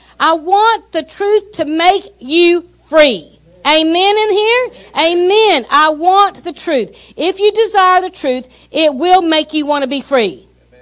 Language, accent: English, American